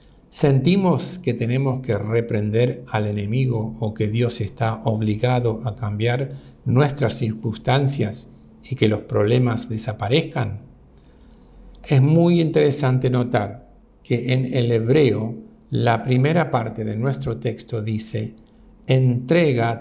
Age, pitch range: 50-69, 115-145 Hz